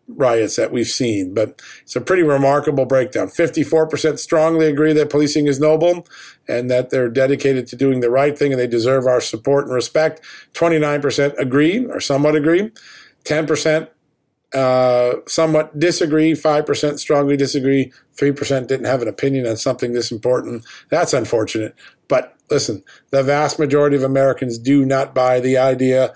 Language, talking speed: English, 160 wpm